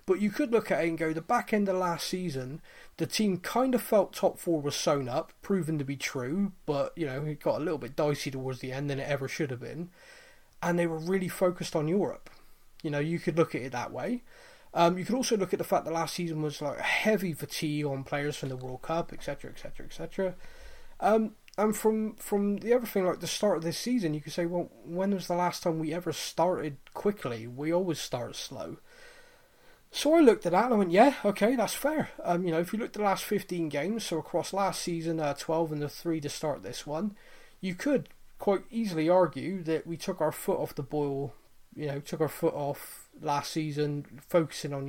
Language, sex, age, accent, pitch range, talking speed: English, male, 20-39, British, 150-215 Hz, 235 wpm